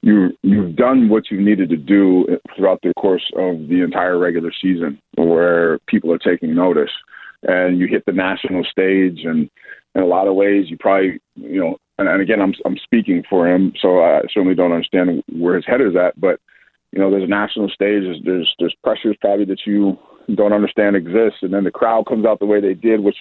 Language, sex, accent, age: English, male, American, 40-59